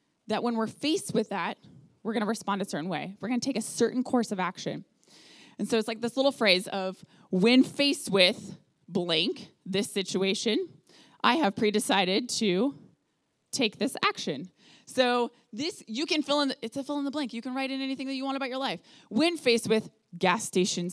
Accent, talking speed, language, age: American, 205 wpm, English, 20-39